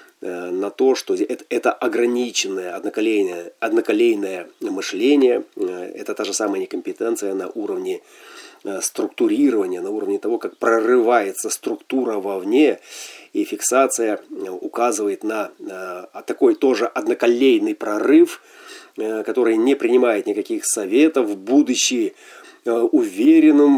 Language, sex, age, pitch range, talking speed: Russian, male, 30-49, 335-380 Hz, 95 wpm